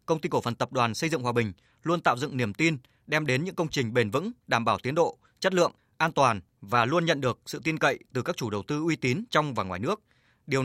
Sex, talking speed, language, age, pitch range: male, 275 wpm, Vietnamese, 20-39, 120-160 Hz